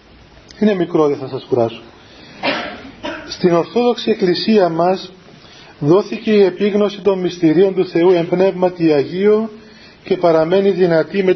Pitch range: 160-195 Hz